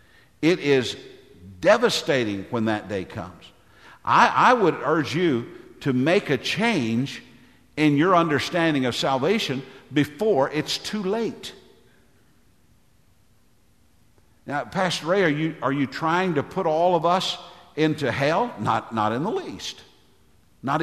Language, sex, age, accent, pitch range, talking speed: English, male, 50-69, American, 125-180 Hz, 135 wpm